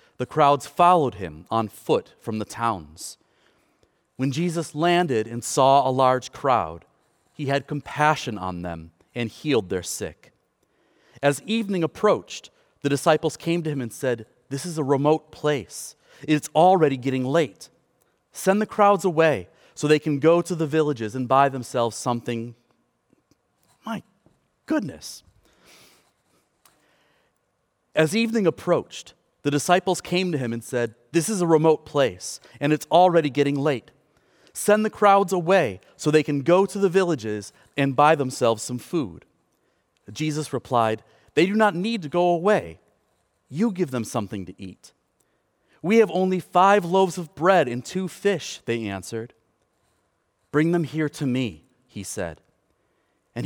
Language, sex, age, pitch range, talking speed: English, male, 30-49, 120-175 Hz, 150 wpm